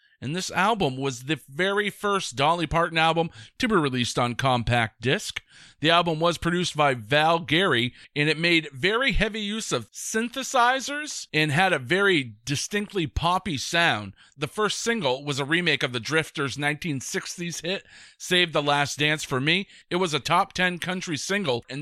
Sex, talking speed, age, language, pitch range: male, 175 wpm, 40-59, English, 140-190 Hz